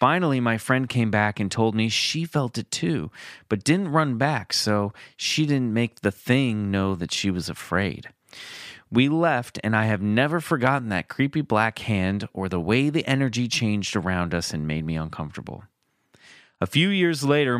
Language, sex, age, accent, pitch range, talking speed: English, male, 30-49, American, 95-140 Hz, 185 wpm